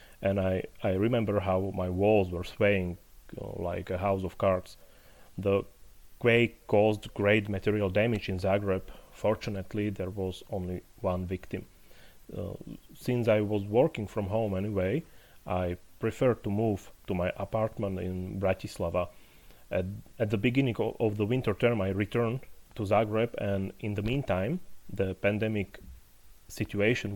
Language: English